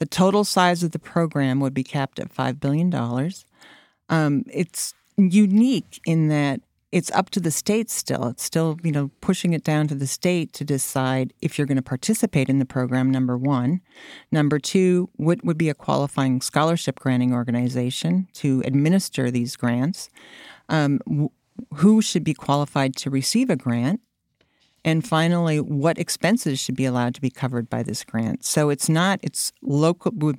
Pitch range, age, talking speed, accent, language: 135-175 Hz, 50-69, 170 wpm, American, English